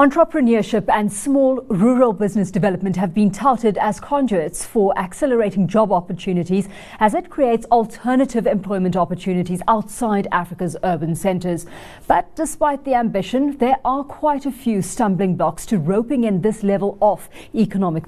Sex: female